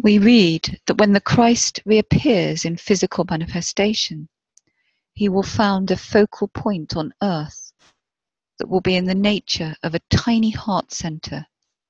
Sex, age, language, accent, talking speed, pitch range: female, 40-59, English, British, 145 wpm, 170-205 Hz